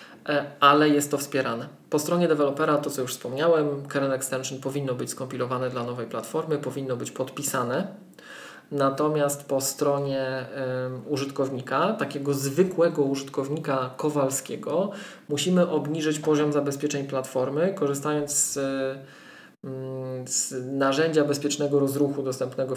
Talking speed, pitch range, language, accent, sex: 110 wpm, 130-145 Hz, Polish, native, male